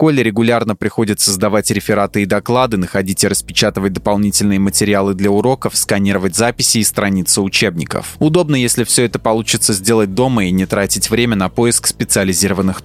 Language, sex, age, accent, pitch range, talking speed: Russian, male, 20-39, native, 100-120 Hz, 160 wpm